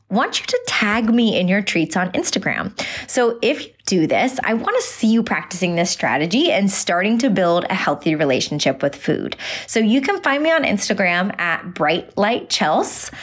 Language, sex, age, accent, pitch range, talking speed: English, female, 20-39, American, 180-245 Hz, 185 wpm